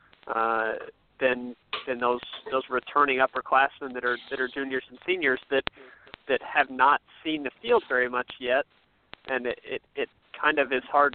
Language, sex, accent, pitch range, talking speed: English, male, American, 120-140 Hz, 165 wpm